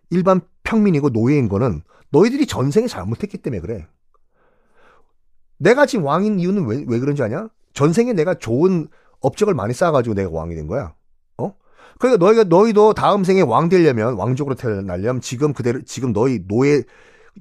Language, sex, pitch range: Korean, male, 120-190 Hz